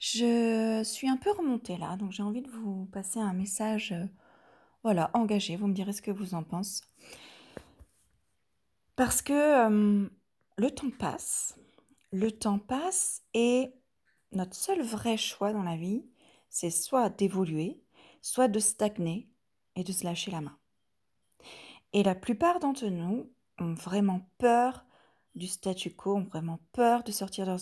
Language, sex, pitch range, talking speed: French, female, 185-240 Hz, 155 wpm